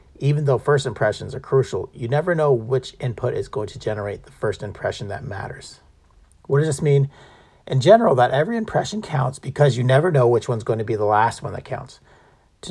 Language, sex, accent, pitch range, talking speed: English, male, American, 110-145 Hz, 210 wpm